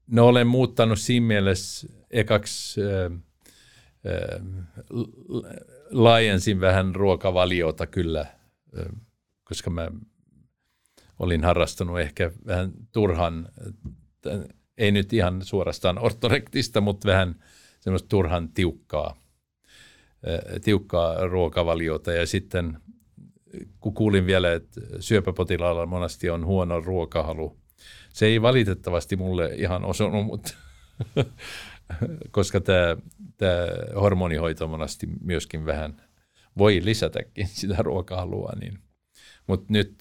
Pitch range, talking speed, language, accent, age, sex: 85-105 Hz, 95 wpm, Finnish, native, 50-69, male